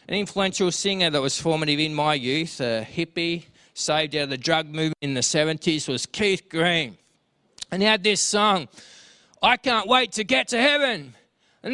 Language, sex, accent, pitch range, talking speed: English, male, Australian, 145-220 Hz, 185 wpm